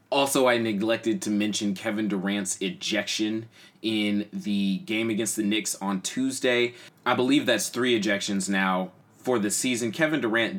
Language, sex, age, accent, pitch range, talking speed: English, male, 20-39, American, 95-110 Hz, 155 wpm